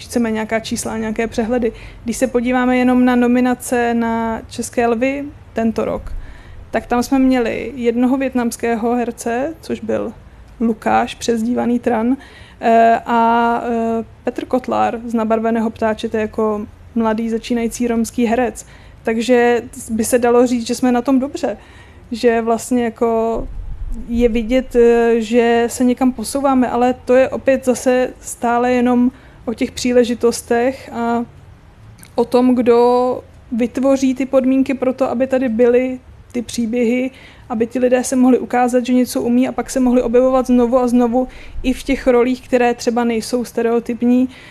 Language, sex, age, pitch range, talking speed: Czech, female, 20-39, 230-250 Hz, 145 wpm